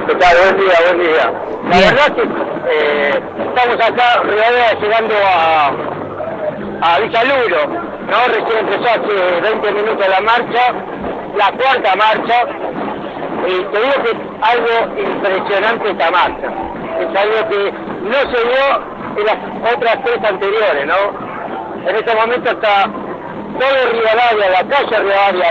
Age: 50-69